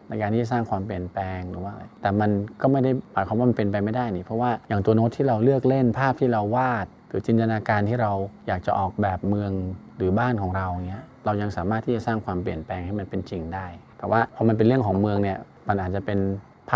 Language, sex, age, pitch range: Thai, male, 20-39, 100-120 Hz